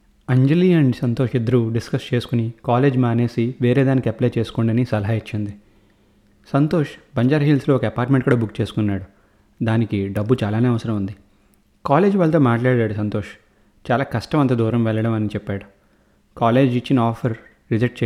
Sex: male